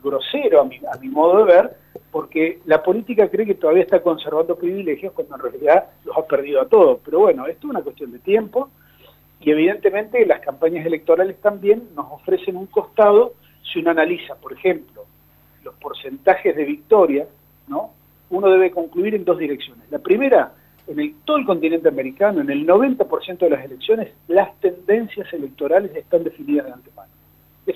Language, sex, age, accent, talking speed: Spanish, male, 40-59, Argentinian, 175 wpm